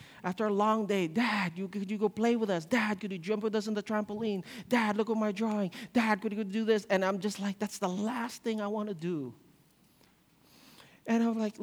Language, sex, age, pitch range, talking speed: English, male, 40-59, 185-230 Hz, 240 wpm